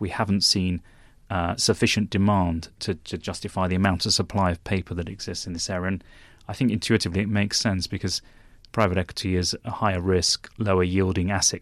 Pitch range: 90-105 Hz